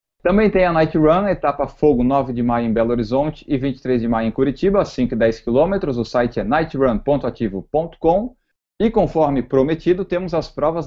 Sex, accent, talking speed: male, Brazilian, 180 wpm